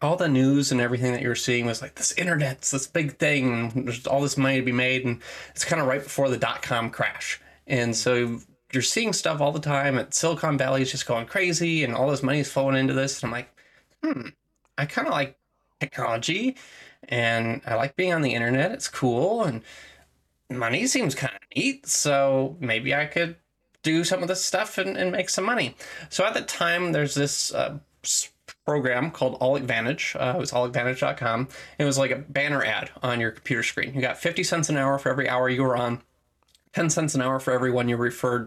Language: English